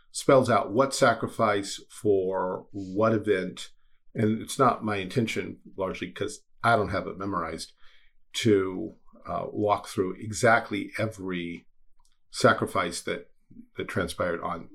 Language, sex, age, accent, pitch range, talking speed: English, male, 50-69, American, 90-110 Hz, 120 wpm